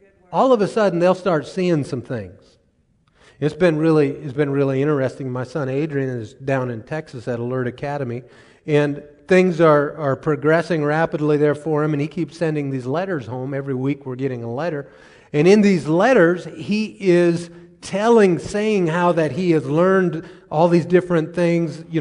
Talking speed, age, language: 180 wpm, 30-49, English